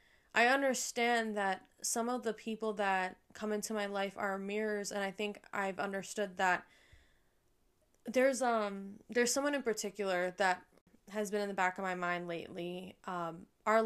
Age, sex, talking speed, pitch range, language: 10-29, female, 165 wpm, 190-215 Hz, English